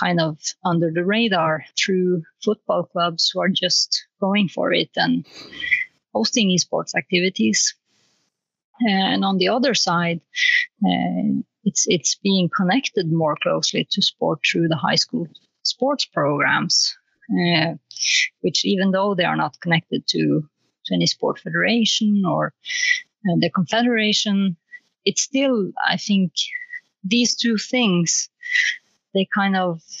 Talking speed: 130 wpm